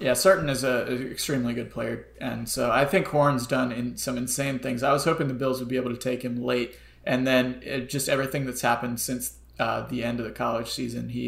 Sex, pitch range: male, 120-145 Hz